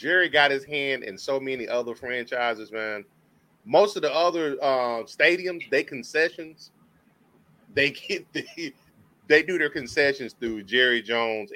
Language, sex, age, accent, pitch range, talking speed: English, male, 30-49, American, 120-180 Hz, 145 wpm